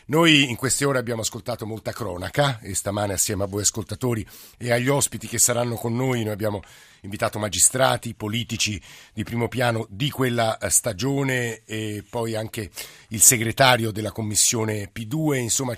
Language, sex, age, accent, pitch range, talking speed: Italian, male, 50-69, native, 105-130 Hz, 155 wpm